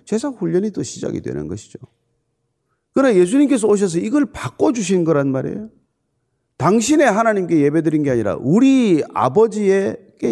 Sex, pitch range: male, 140-225 Hz